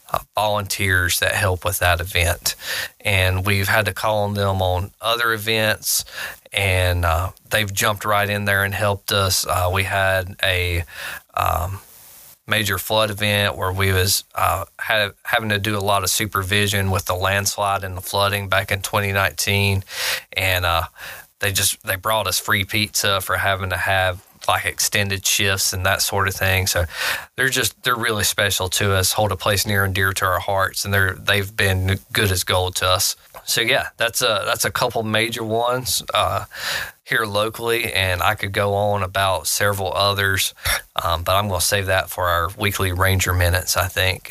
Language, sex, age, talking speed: English, male, 20-39, 185 wpm